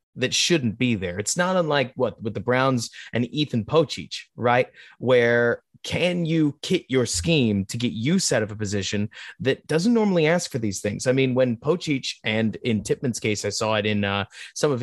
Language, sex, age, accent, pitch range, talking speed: English, male, 30-49, American, 110-145 Hz, 200 wpm